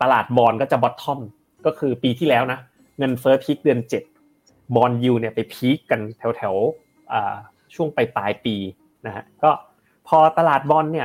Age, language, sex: 30-49, Thai, male